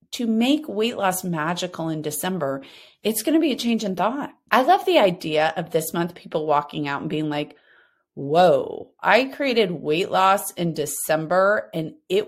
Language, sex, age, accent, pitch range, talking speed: English, female, 30-49, American, 170-275 Hz, 175 wpm